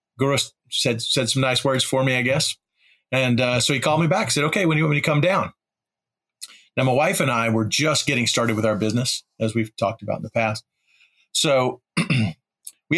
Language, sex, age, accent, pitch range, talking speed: English, male, 40-59, American, 115-140 Hz, 225 wpm